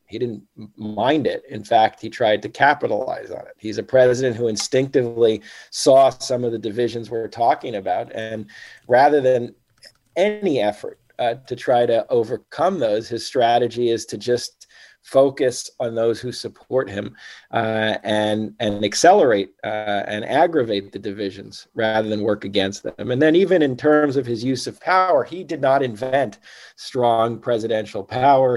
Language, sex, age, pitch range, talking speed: English, male, 40-59, 115-135 Hz, 165 wpm